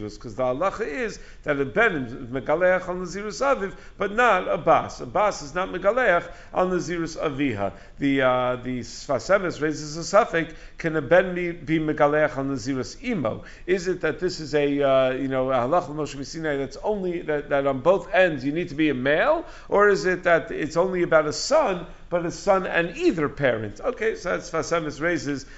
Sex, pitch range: male, 145-180 Hz